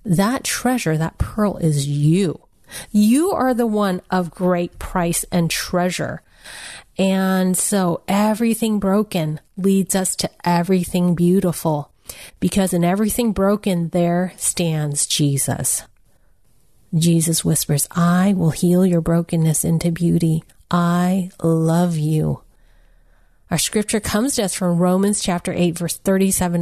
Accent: American